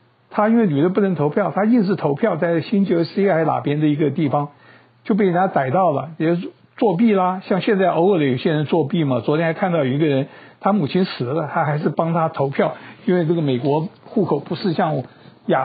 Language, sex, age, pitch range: Chinese, male, 60-79, 150-205 Hz